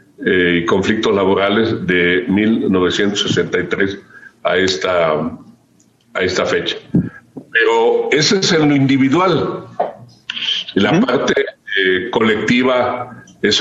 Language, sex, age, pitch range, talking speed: Spanish, male, 50-69, 95-125 Hz, 95 wpm